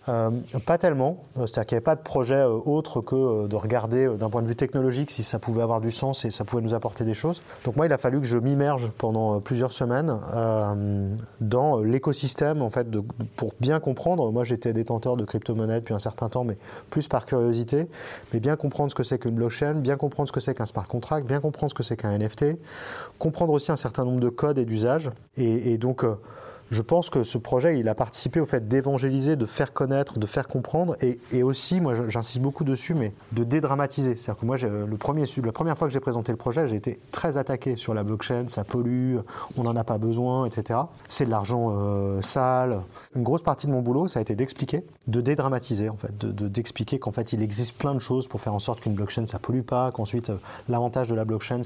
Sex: male